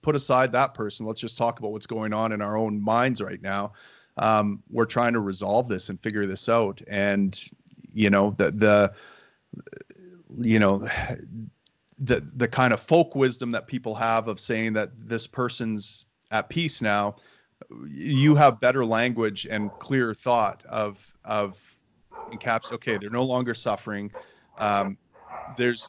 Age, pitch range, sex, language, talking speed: 30-49, 100-115 Hz, male, English, 160 wpm